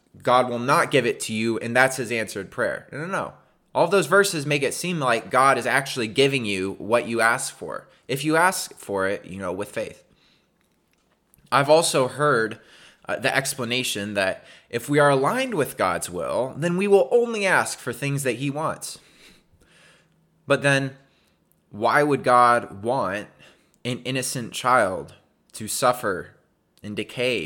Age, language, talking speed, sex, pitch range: 20-39, English, 170 wpm, male, 120-150 Hz